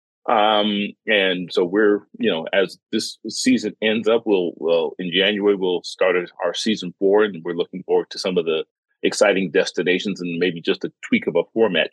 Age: 40-59